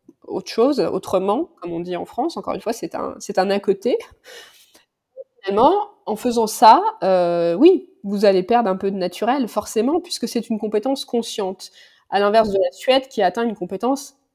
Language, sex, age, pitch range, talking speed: French, female, 20-39, 190-240 Hz, 185 wpm